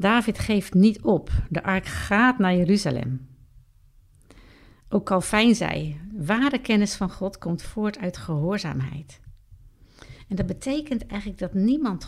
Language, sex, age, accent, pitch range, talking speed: Dutch, female, 50-69, Dutch, 135-205 Hz, 135 wpm